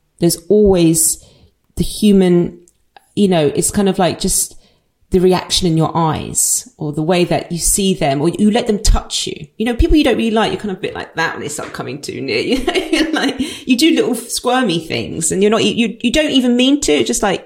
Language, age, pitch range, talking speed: English, 40-59, 170-225 Hz, 225 wpm